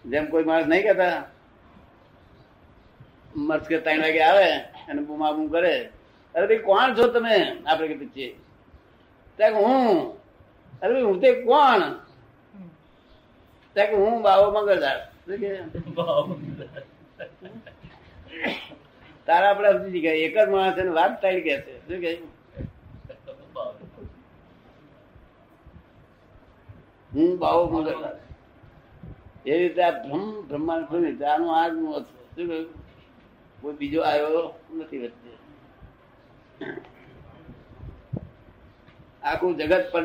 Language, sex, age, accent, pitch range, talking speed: Gujarati, male, 60-79, native, 145-180 Hz, 30 wpm